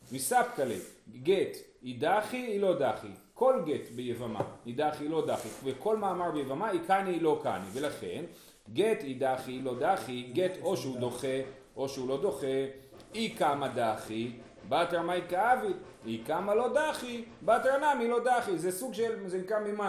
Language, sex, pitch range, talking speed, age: Hebrew, male, 140-220 Hz, 170 wpm, 40-59